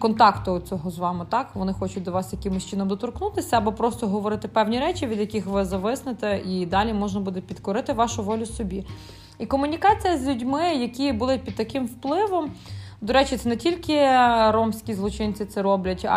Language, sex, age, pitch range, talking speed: Ukrainian, female, 20-39, 200-260 Hz, 175 wpm